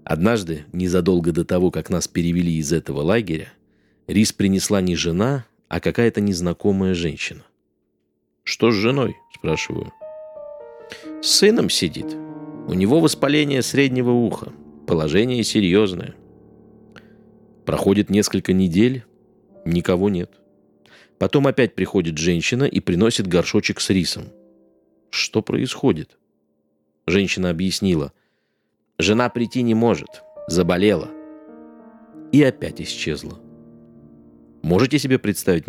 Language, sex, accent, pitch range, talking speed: Russian, male, native, 85-120 Hz, 105 wpm